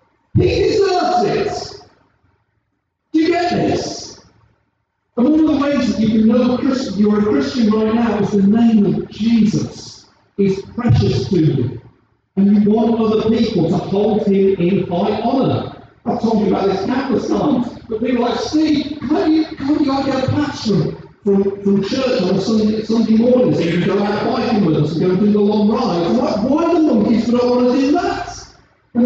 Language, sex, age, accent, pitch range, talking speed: English, male, 50-69, British, 210-295 Hz, 200 wpm